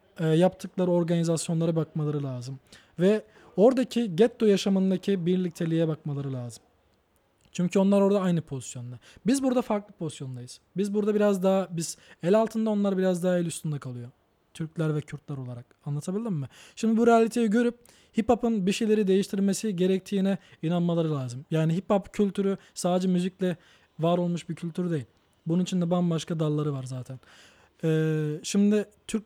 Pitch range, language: 155-200 Hz, Turkish